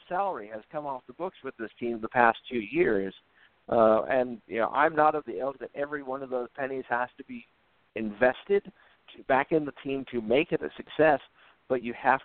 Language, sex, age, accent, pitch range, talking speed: English, male, 50-69, American, 110-135 Hz, 210 wpm